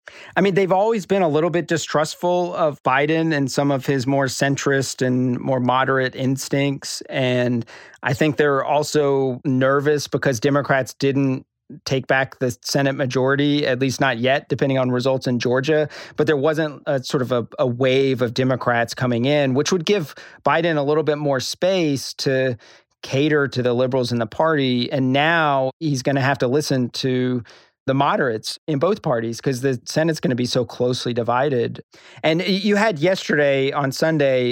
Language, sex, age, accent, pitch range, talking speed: English, male, 40-59, American, 130-150 Hz, 180 wpm